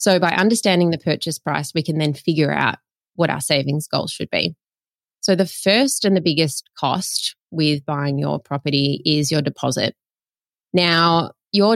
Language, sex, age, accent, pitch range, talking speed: English, female, 20-39, Australian, 155-190 Hz, 170 wpm